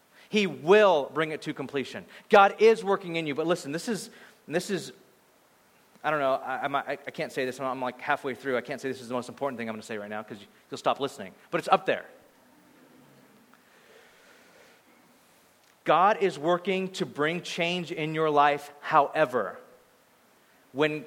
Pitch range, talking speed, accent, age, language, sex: 145-215 Hz, 180 wpm, American, 30-49, English, male